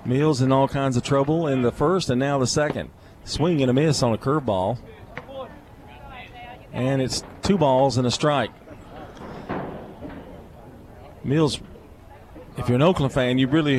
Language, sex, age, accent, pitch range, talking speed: English, male, 40-59, American, 105-150 Hz, 150 wpm